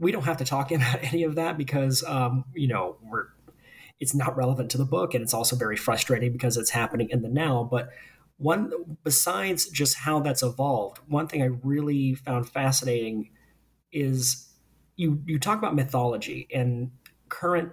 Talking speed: 175 wpm